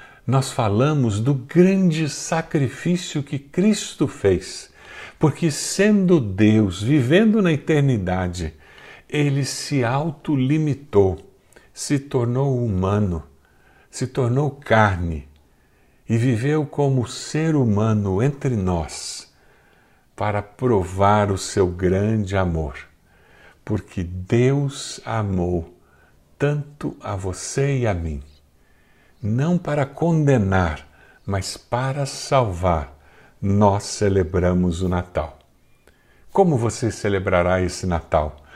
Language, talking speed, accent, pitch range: Portuguese, 95 wpm, Brazilian, 95-140 Hz